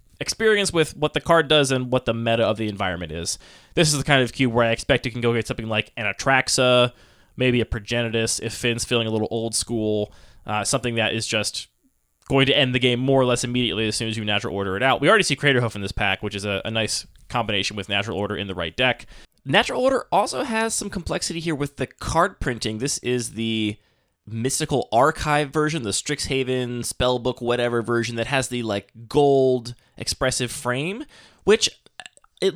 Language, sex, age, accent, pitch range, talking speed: English, male, 20-39, American, 110-145 Hz, 210 wpm